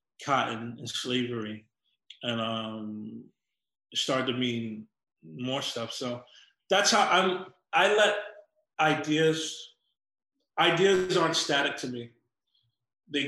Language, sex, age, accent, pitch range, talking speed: English, male, 30-49, American, 120-155 Hz, 105 wpm